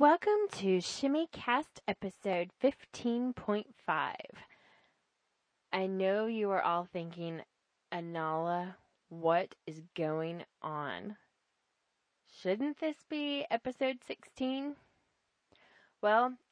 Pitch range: 180-225 Hz